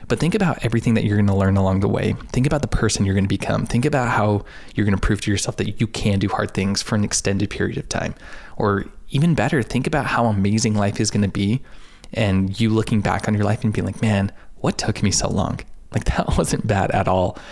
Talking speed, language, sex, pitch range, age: 245 wpm, English, male, 100-115 Hz, 20-39